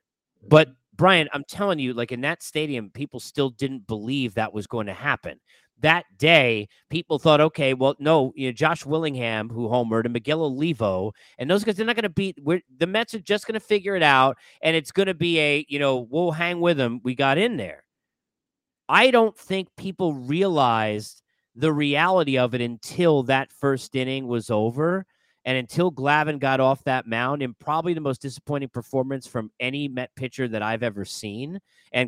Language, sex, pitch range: English, male, 125-160 Hz